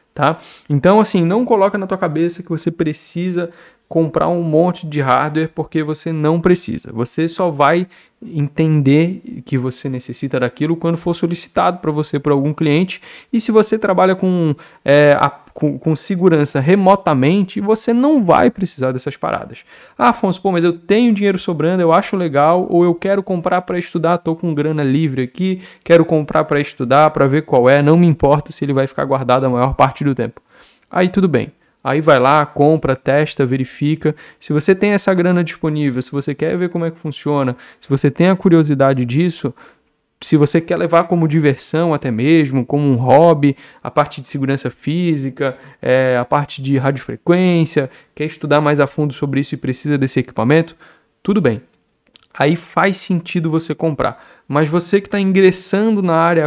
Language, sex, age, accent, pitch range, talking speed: Portuguese, male, 20-39, Brazilian, 145-175 Hz, 175 wpm